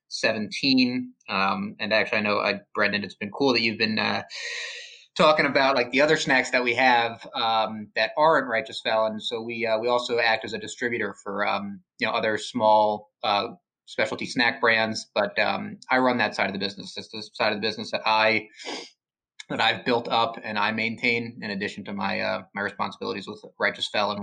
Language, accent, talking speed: English, American, 205 wpm